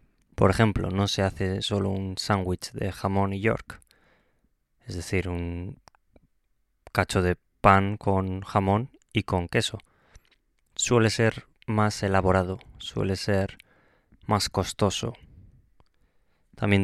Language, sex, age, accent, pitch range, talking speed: Spanish, male, 20-39, Spanish, 95-110 Hz, 115 wpm